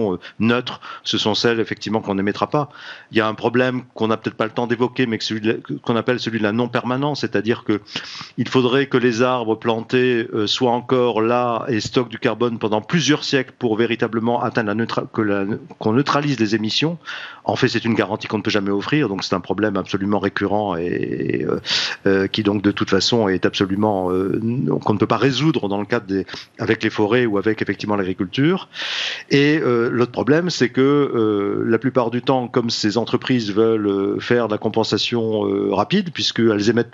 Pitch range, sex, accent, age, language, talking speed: 110-130 Hz, male, French, 40-59, French, 205 wpm